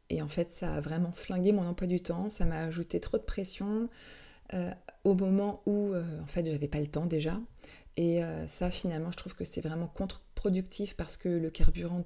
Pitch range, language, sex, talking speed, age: 155-185 Hz, French, female, 215 wpm, 30-49